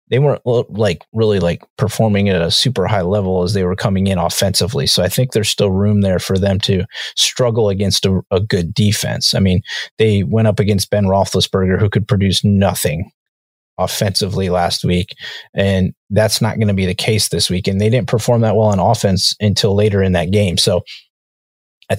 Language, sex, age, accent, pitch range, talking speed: English, male, 30-49, American, 95-110 Hz, 200 wpm